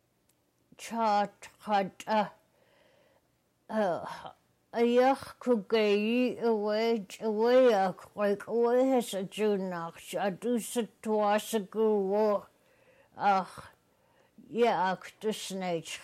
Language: English